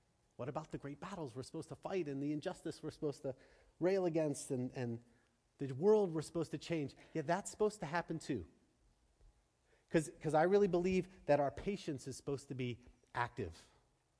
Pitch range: 140-200 Hz